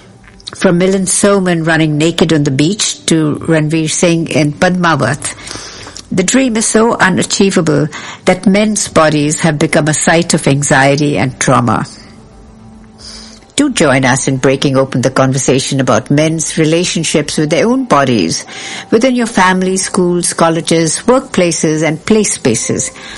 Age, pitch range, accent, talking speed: 60-79, 140-195 Hz, Indian, 135 wpm